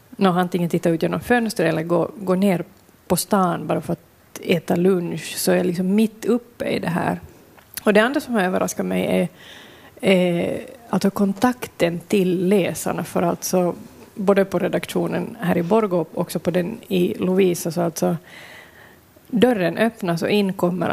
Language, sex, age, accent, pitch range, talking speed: Swedish, female, 30-49, native, 175-200 Hz, 185 wpm